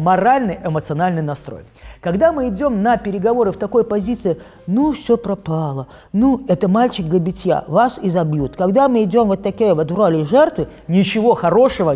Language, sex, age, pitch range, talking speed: Russian, male, 20-39, 170-235 Hz, 155 wpm